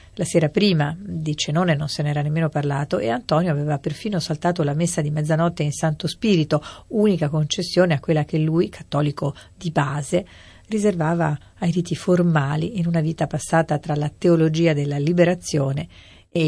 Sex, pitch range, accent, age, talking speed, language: female, 145-170 Hz, native, 50-69, 165 wpm, Italian